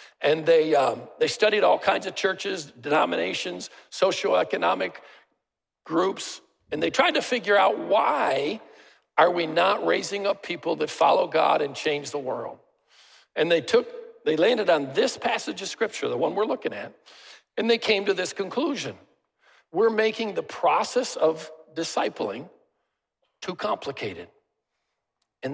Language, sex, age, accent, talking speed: English, male, 50-69, American, 145 wpm